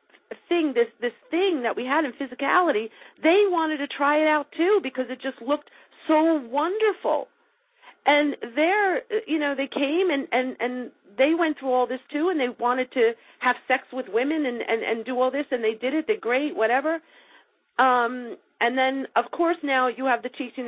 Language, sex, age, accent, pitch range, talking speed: English, female, 50-69, American, 245-340 Hz, 195 wpm